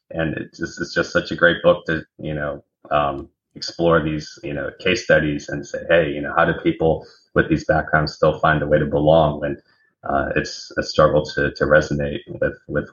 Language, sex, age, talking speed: English, male, 30-49, 220 wpm